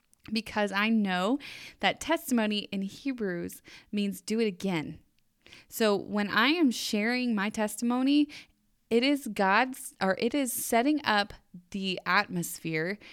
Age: 20-39